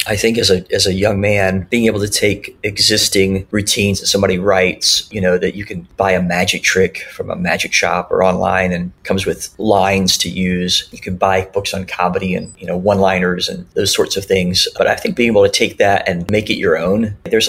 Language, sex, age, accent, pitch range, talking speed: English, male, 30-49, American, 95-105 Hz, 235 wpm